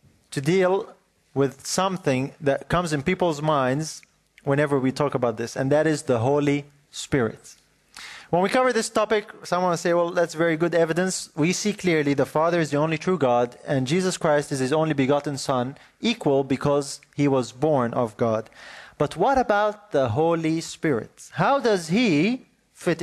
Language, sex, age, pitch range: English, male, 30-49, 135-185 Hz